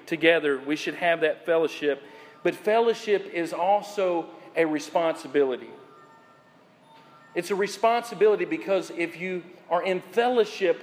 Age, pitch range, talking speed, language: 40-59, 180-230 Hz, 115 wpm, English